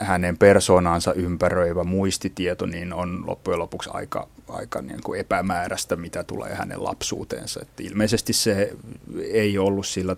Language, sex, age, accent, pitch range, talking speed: Finnish, male, 30-49, native, 90-100 Hz, 130 wpm